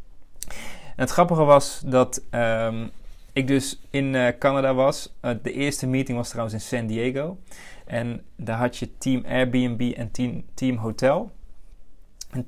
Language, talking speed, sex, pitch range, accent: Dutch, 155 wpm, male, 110-135 Hz, Dutch